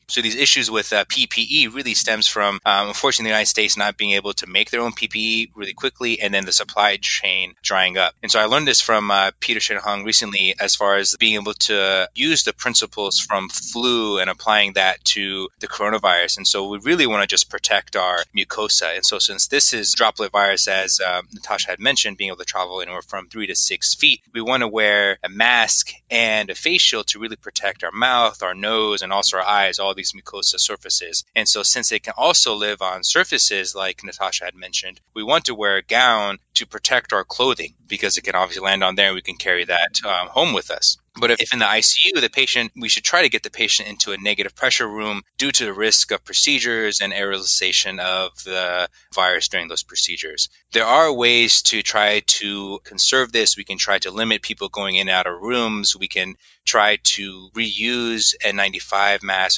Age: 20-39